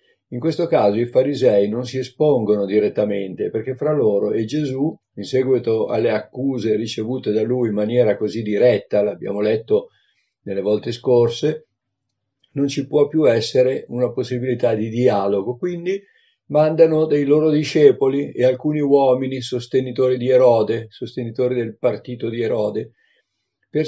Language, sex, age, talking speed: Italian, male, 50-69, 140 wpm